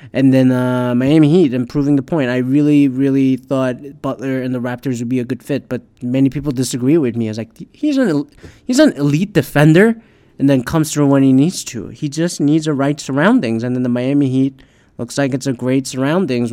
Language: English